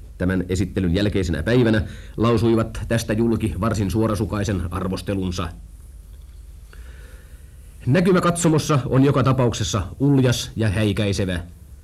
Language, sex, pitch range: Finnish, male, 90-115 Hz